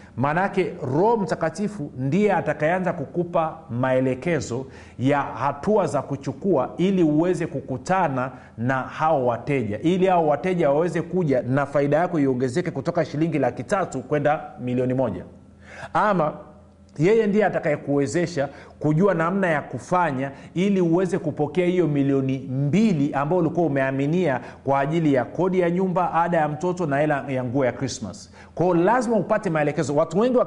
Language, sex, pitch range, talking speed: Swahili, male, 145-195 Hz, 140 wpm